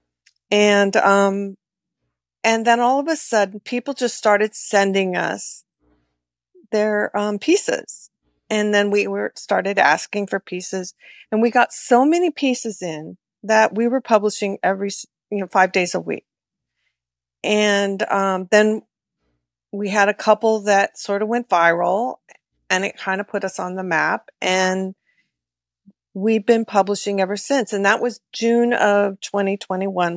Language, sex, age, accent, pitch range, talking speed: English, female, 40-59, American, 180-220 Hz, 150 wpm